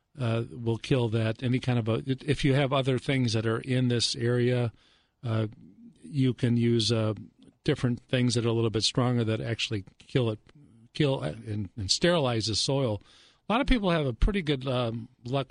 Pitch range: 110-130 Hz